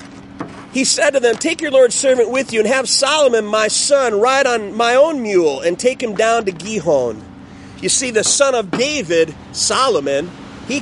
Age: 40-59